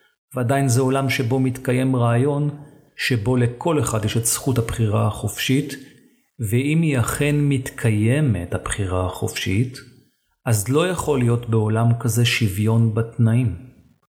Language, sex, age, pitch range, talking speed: Hebrew, male, 40-59, 115-140 Hz, 120 wpm